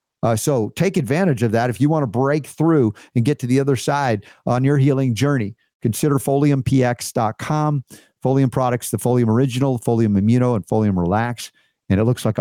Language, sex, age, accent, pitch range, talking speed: English, male, 50-69, American, 115-145 Hz, 185 wpm